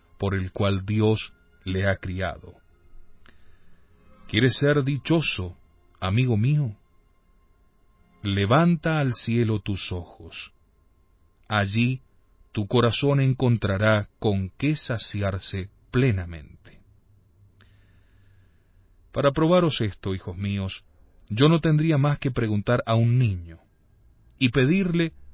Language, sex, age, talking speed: Spanish, male, 40-59, 95 wpm